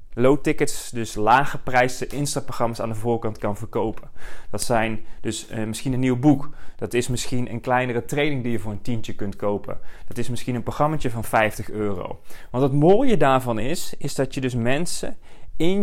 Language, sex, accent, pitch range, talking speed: Dutch, male, Dutch, 120-150 Hz, 195 wpm